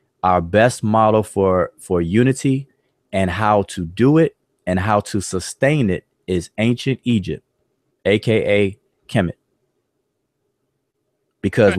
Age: 30-49